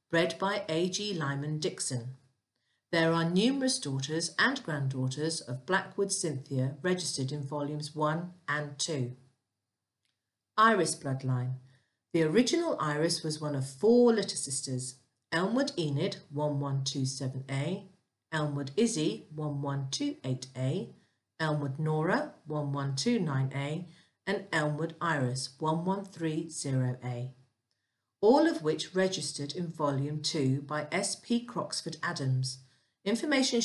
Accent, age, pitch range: British, 50-69, 135-185 Hz